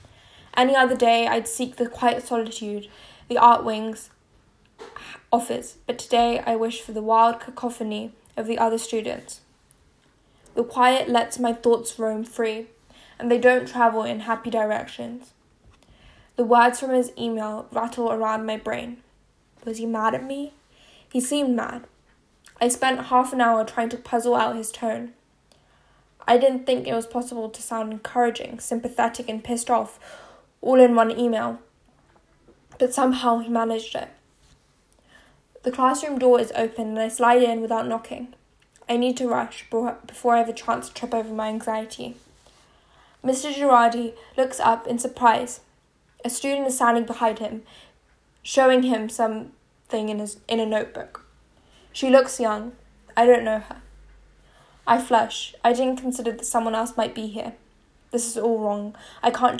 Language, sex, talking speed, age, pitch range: English, female, 160 wpm, 10-29, 220-245 Hz